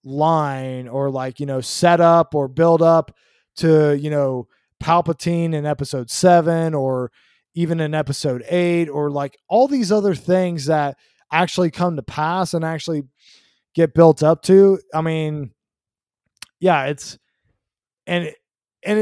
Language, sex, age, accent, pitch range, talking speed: English, male, 20-39, American, 150-185 Hz, 140 wpm